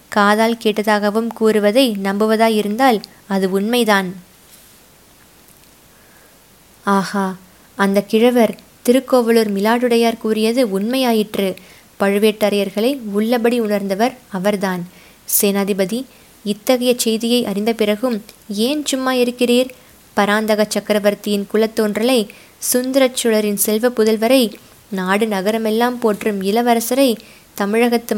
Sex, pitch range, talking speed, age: female, 205-240 Hz, 75 wpm, 20-39